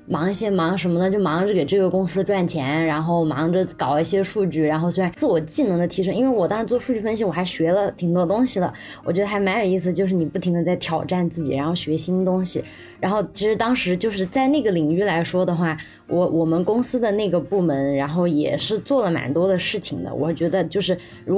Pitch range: 165-200 Hz